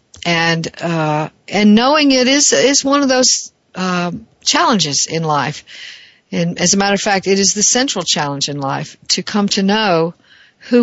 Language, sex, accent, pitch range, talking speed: English, female, American, 170-220 Hz, 175 wpm